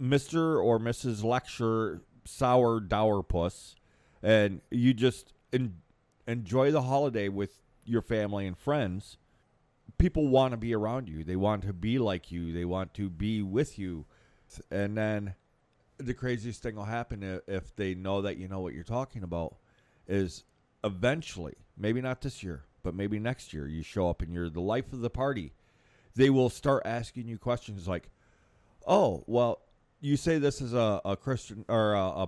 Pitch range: 95-125 Hz